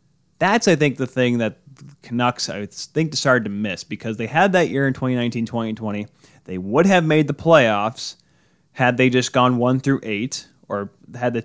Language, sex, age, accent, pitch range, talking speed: English, male, 20-39, American, 105-135 Hz, 190 wpm